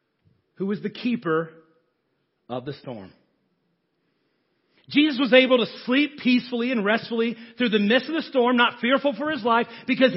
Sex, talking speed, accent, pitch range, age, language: male, 160 wpm, American, 195-240 Hz, 40-59, English